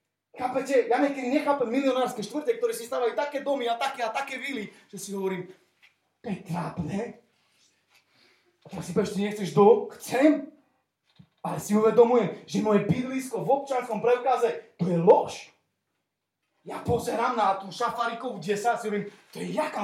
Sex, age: male, 30-49